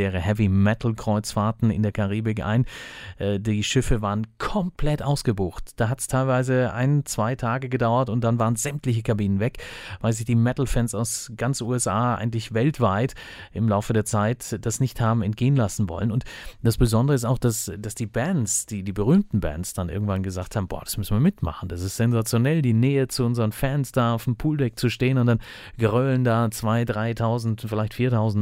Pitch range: 105-125 Hz